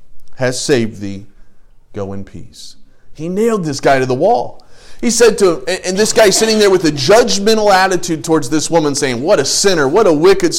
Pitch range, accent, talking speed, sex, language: 125-195 Hz, American, 205 wpm, male, English